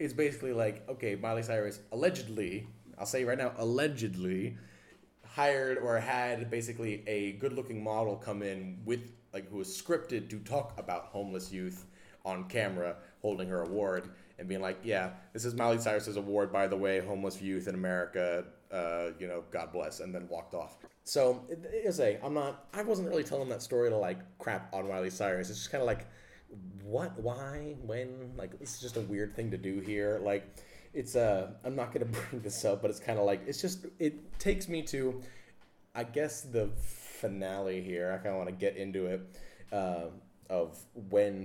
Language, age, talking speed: English, 30-49, 190 wpm